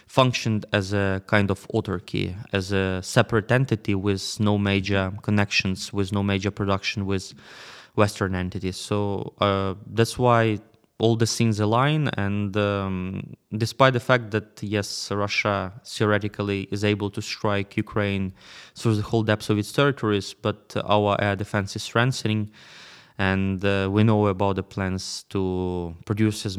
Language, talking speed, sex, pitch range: English, 150 wpm, male, 95-110 Hz